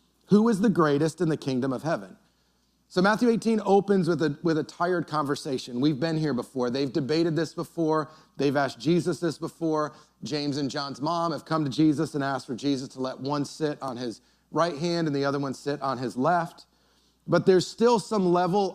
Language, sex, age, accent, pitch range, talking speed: English, male, 30-49, American, 150-180 Hz, 210 wpm